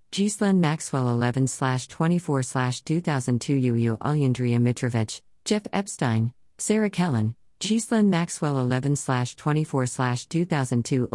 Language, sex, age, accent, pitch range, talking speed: English, female, 50-69, American, 125-170 Hz, 70 wpm